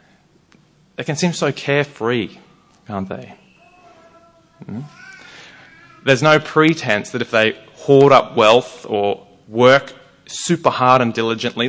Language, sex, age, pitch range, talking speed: English, male, 30-49, 110-140 Hz, 120 wpm